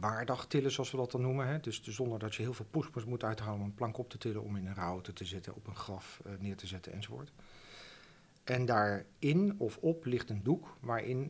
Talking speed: 240 wpm